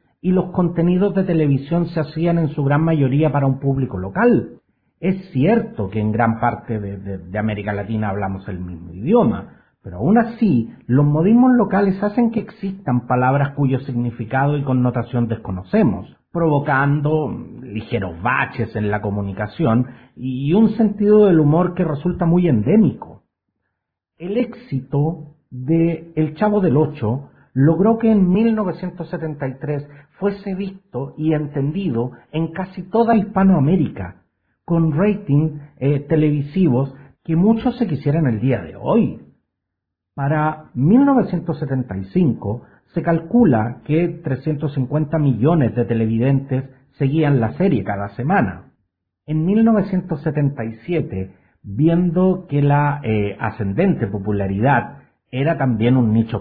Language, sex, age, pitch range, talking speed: Spanish, male, 50-69, 120-175 Hz, 125 wpm